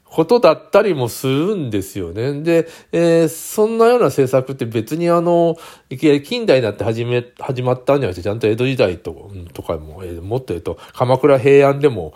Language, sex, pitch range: Japanese, male, 105-155 Hz